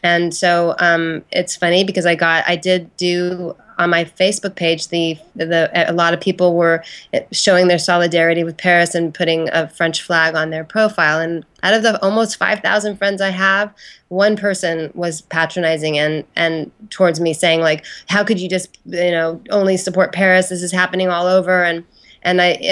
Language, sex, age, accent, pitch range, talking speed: English, female, 30-49, American, 170-200 Hz, 190 wpm